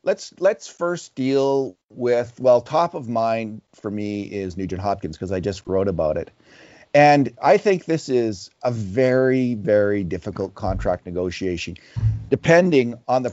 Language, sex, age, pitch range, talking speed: English, male, 40-59, 95-135 Hz, 155 wpm